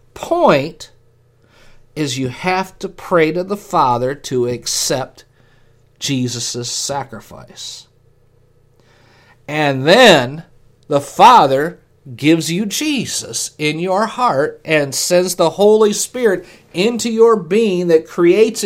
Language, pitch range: English, 125-195 Hz